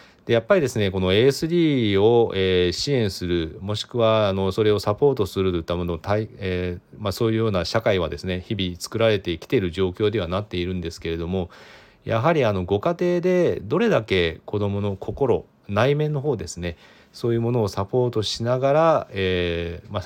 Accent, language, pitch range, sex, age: native, Japanese, 90-115 Hz, male, 40-59